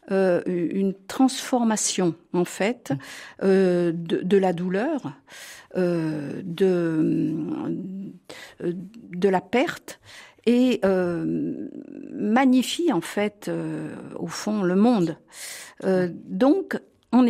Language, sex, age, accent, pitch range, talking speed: French, female, 50-69, French, 175-235 Hz, 100 wpm